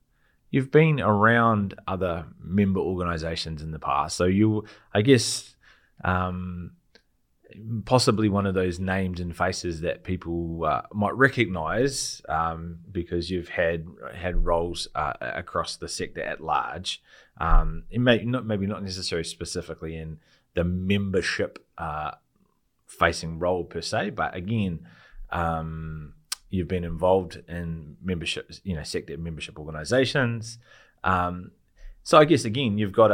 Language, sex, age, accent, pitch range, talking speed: English, male, 20-39, Australian, 80-100 Hz, 135 wpm